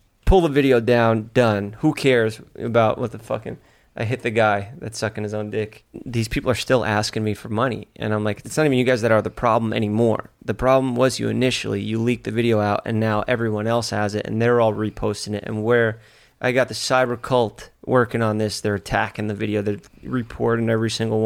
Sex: male